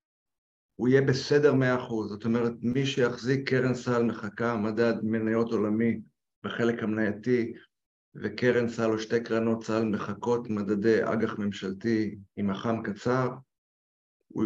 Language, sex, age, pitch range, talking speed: Hebrew, male, 50-69, 115-135 Hz, 130 wpm